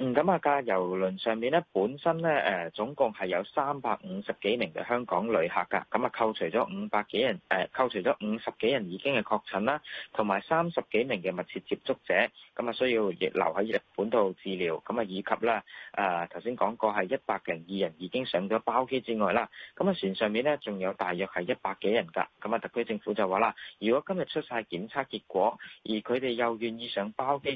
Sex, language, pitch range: male, Chinese, 95-130 Hz